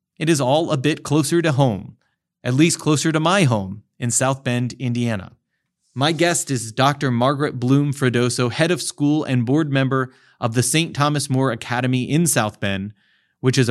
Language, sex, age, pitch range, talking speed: English, male, 30-49, 120-145 Hz, 185 wpm